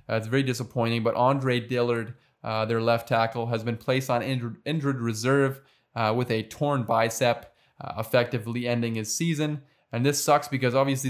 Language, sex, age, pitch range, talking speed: English, male, 20-39, 115-130 Hz, 180 wpm